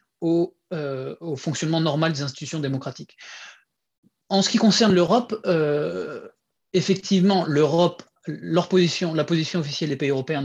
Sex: male